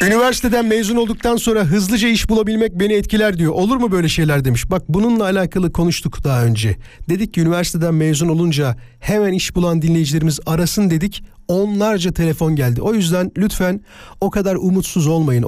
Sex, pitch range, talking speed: male, 155-210 Hz, 165 wpm